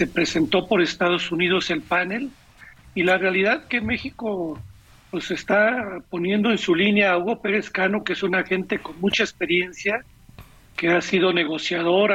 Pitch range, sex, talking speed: 175-210 Hz, male, 165 wpm